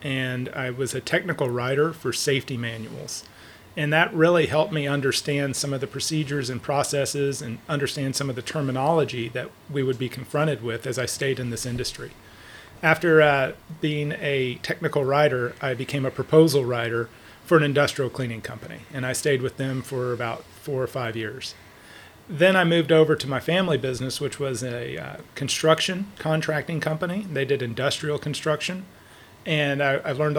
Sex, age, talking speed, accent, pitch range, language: male, 40-59, 175 wpm, American, 125-155 Hz, English